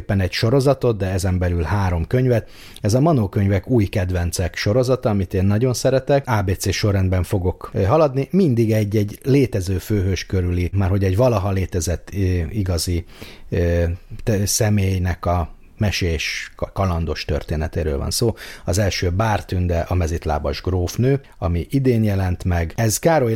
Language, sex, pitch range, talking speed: Hungarian, male, 85-105 Hz, 135 wpm